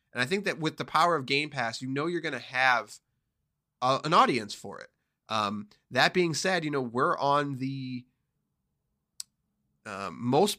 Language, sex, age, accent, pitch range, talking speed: English, male, 30-49, American, 120-170 Hz, 180 wpm